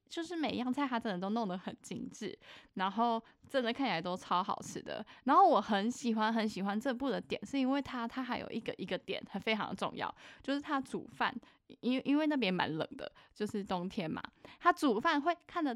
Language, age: Chinese, 10-29